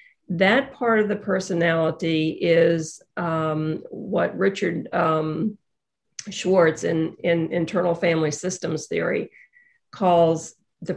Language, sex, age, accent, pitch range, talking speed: English, female, 50-69, American, 165-210 Hz, 105 wpm